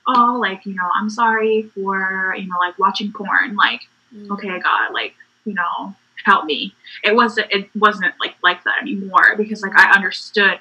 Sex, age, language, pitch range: female, 20-39, English, 195-245 Hz